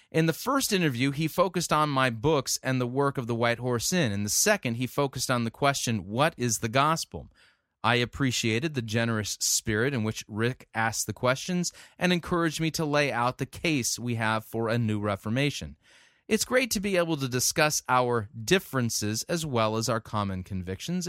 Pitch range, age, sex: 115-150 Hz, 30-49, male